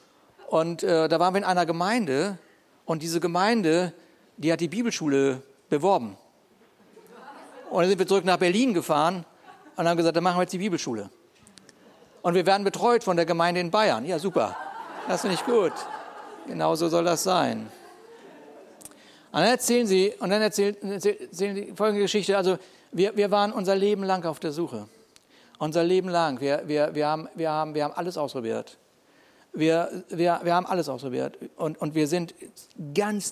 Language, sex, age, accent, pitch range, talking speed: German, male, 60-79, German, 155-200 Hz, 175 wpm